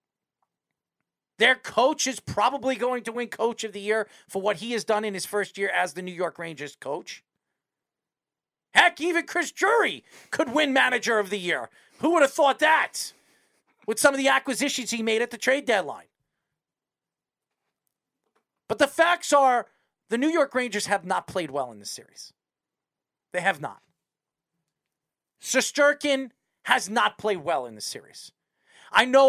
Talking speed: 165 wpm